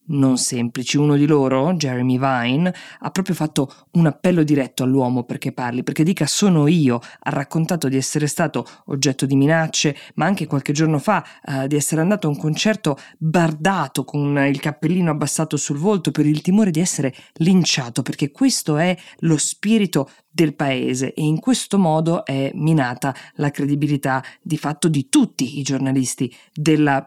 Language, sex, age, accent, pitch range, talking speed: Italian, female, 20-39, native, 135-175 Hz, 165 wpm